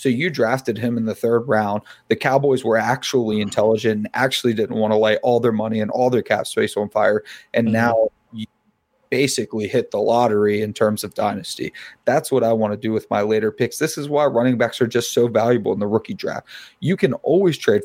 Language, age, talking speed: English, 30-49, 225 wpm